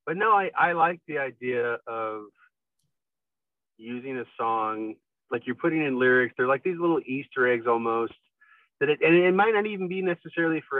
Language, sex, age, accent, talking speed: English, male, 30-49, American, 185 wpm